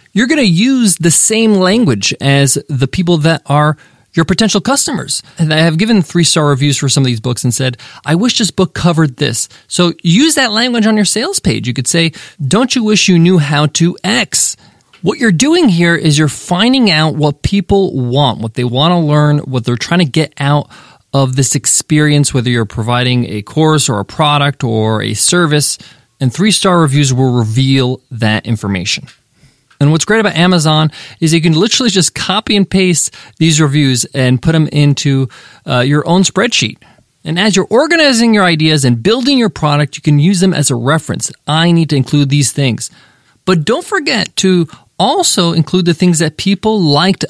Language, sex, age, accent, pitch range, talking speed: English, male, 20-39, American, 135-190 Hz, 195 wpm